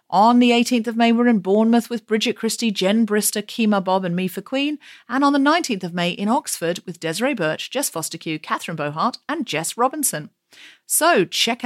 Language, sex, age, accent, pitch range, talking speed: English, female, 40-59, British, 175-230 Hz, 200 wpm